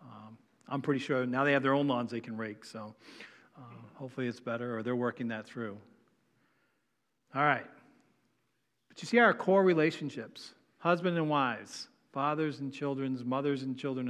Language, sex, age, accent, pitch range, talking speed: English, male, 40-59, American, 125-170 Hz, 170 wpm